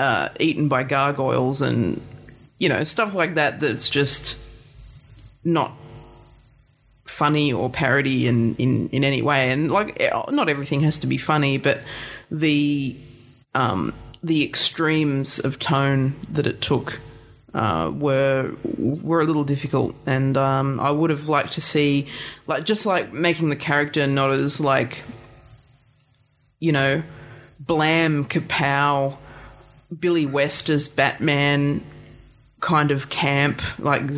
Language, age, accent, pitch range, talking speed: English, 30-49, Australian, 135-150 Hz, 130 wpm